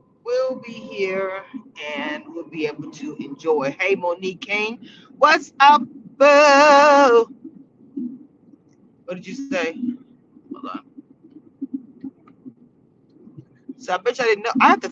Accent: American